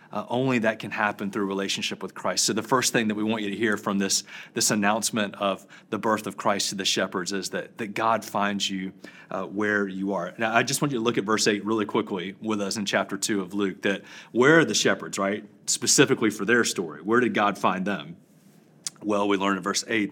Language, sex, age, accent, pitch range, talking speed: English, male, 30-49, American, 100-115 Hz, 240 wpm